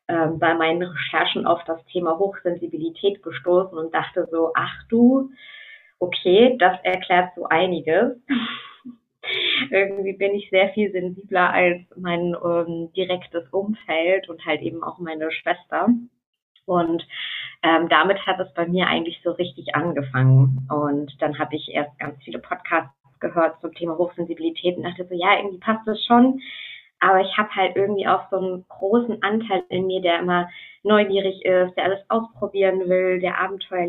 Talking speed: 155 wpm